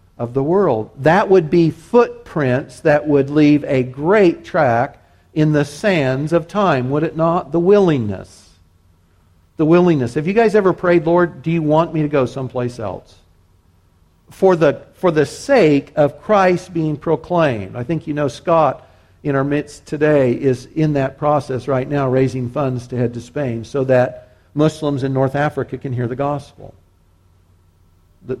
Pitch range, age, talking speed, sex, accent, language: 125-170 Hz, 50-69, 170 wpm, male, American, English